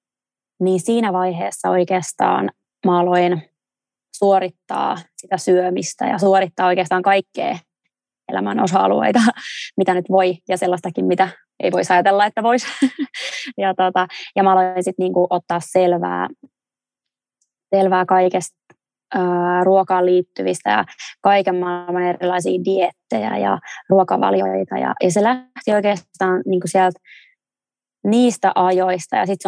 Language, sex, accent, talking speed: Finnish, female, native, 110 wpm